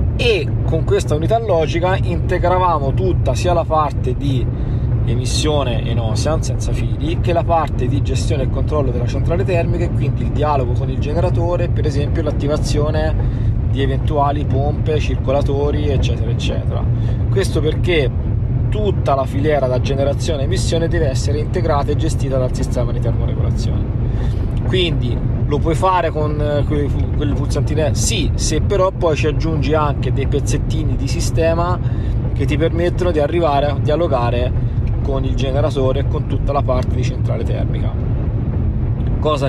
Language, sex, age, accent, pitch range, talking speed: Italian, male, 30-49, native, 115-130 Hz, 150 wpm